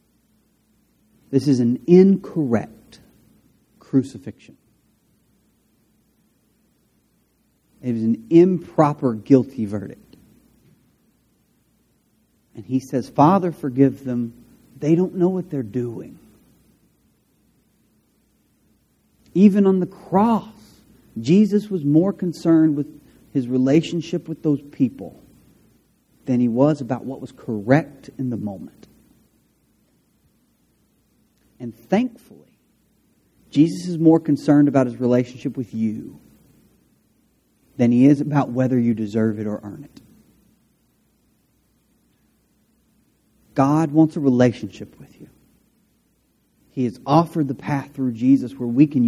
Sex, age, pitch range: male, 40-59, 120-160 Hz